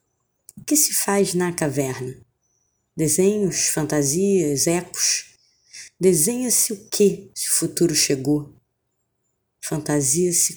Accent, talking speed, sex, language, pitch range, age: Brazilian, 95 wpm, female, Portuguese, 150-200 Hz, 20-39